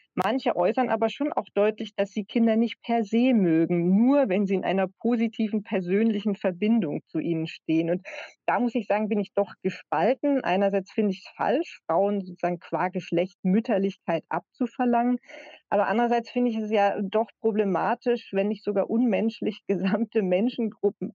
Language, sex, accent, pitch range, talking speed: German, female, German, 185-220 Hz, 165 wpm